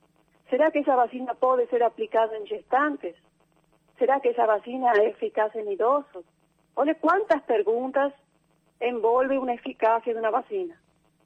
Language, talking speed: Portuguese, 140 wpm